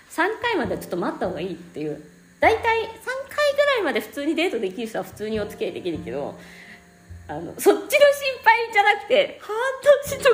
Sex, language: female, Japanese